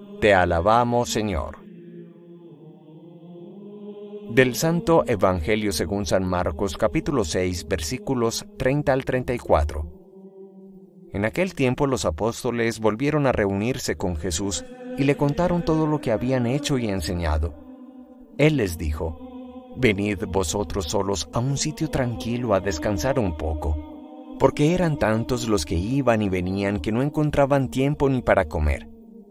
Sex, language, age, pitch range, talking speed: male, English, 30-49, 100-165 Hz, 130 wpm